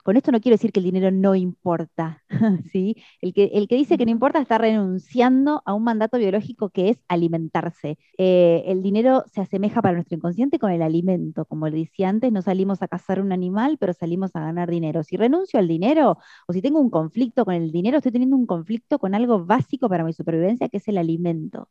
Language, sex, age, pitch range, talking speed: Spanish, female, 20-39, 175-240 Hz, 220 wpm